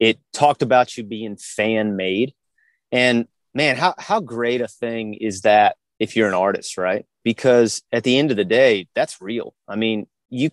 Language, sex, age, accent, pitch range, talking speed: English, male, 30-49, American, 105-125 Hz, 190 wpm